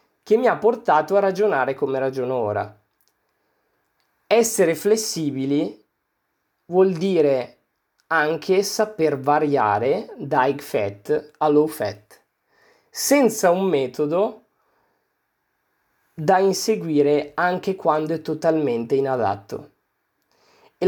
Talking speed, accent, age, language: 95 wpm, native, 20-39, Italian